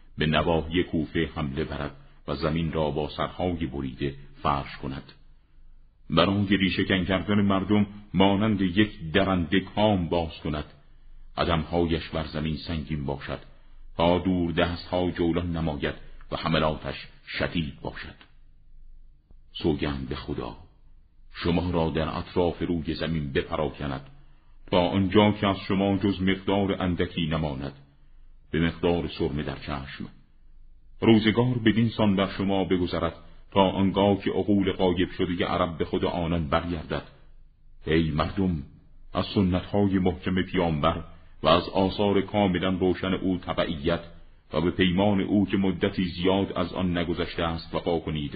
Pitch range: 75-95 Hz